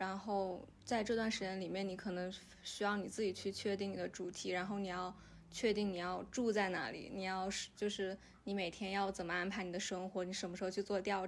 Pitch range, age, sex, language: 185-205 Hz, 20-39, female, Chinese